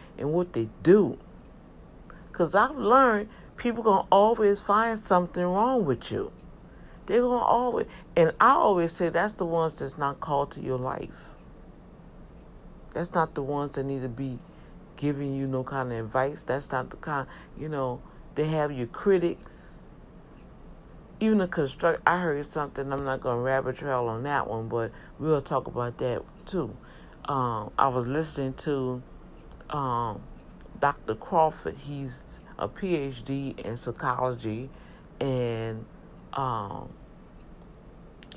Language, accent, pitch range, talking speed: English, American, 125-170 Hz, 145 wpm